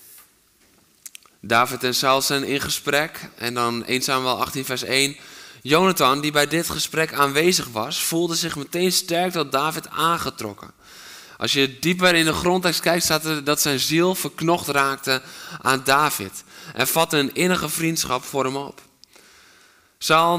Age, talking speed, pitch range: 20-39, 155 wpm, 120-155 Hz